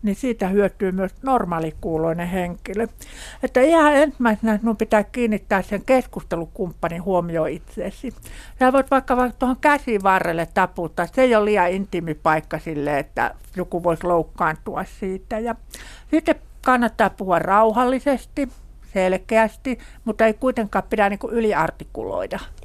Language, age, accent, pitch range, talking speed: Finnish, 60-79, native, 175-235 Hz, 125 wpm